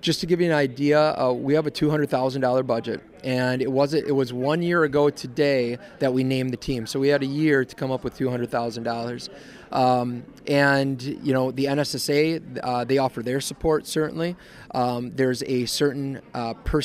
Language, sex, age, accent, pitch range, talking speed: English, male, 30-49, American, 125-145 Hz, 185 wpm